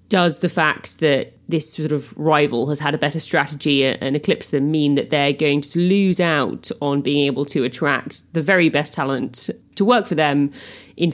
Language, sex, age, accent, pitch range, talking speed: English, female, 30-49, British, 140-170 Hz, 200 wpm